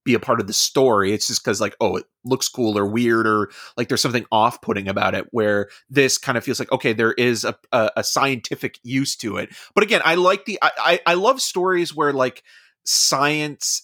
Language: English